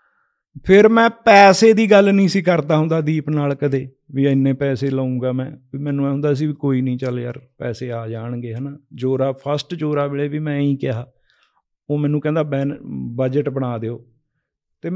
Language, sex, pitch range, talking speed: Punjabi, male, 145-220 Hz, 180 wpm